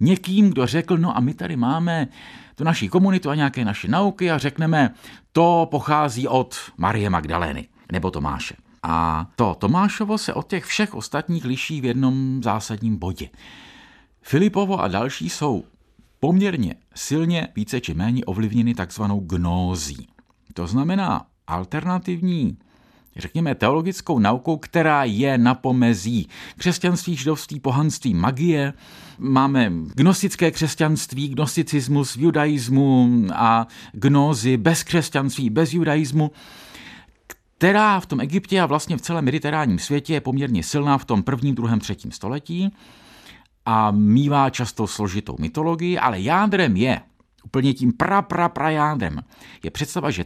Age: 50-69